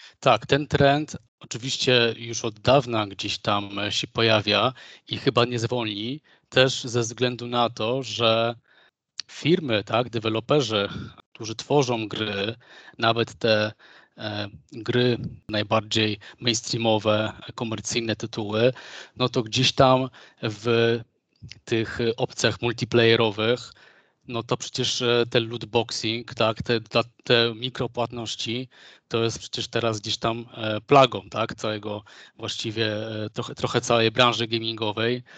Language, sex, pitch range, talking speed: Polish, male, 115-125 Hz, 110 wpm